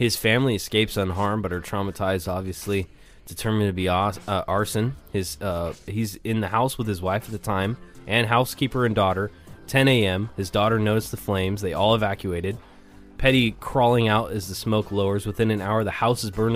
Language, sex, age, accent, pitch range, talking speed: English, male, 20-39, American, 95-110 Hz, 190 wpm